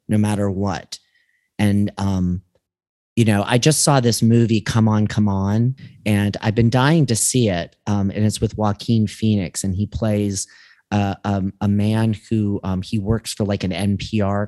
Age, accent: 30-49, American